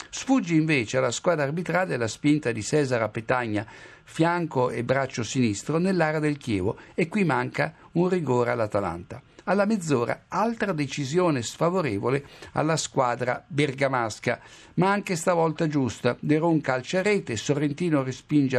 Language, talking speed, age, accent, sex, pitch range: Italian, 125 wpm, 60-79, native, male, 120-160 Hz